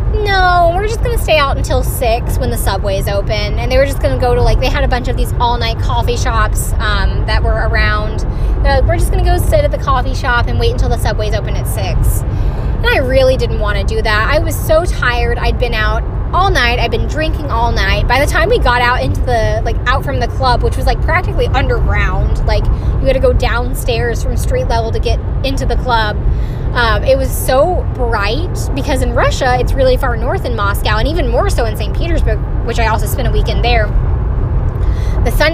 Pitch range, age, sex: 100-125 Hz, 20-39, female